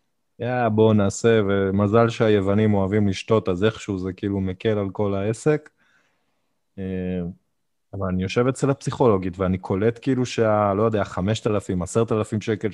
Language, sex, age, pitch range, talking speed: Hebrew, male, 20-39, 100-140 Hz, 140 wpm